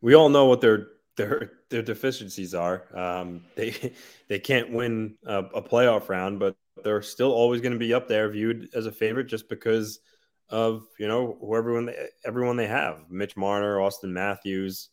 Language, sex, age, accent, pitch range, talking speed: English, male, 20-39, American, 95-115 Hz, 180 wpm